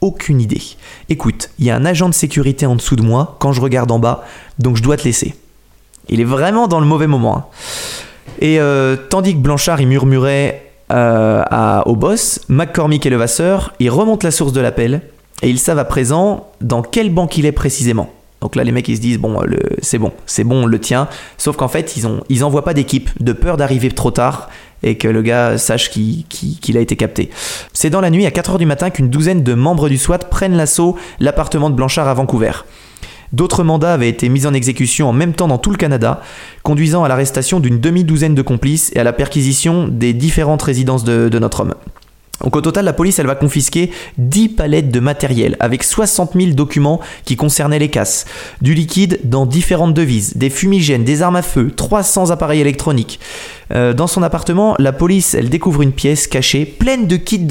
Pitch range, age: 125-170 Hz, 20-39